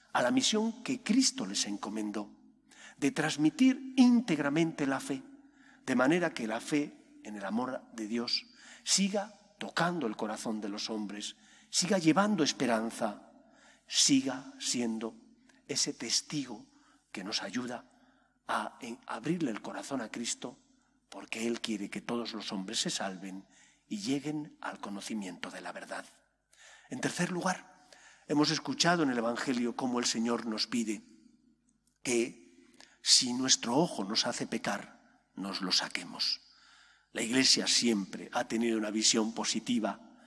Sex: male